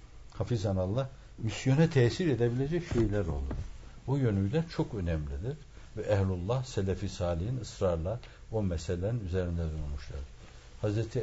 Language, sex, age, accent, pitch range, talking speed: Turkish, male, 60-79, native, 90-125 Hz, 110 wpm